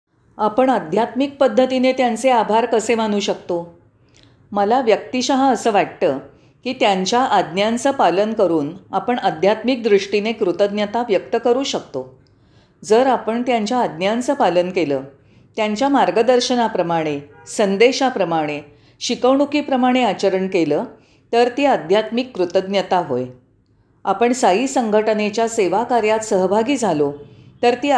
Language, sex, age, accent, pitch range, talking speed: Marathi, female, 40-59, native, 165-245 Hz, 105 wpm